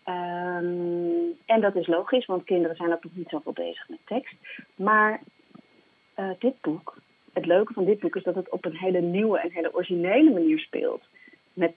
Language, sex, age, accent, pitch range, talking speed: Dutch, female, 40-59, Dutch, 170-240 Hz, 195 wpm